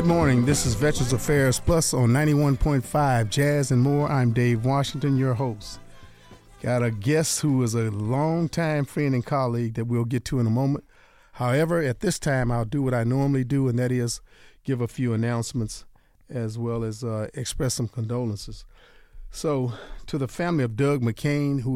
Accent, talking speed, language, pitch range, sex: American, 180 wpm, English, 115-135 Hz, male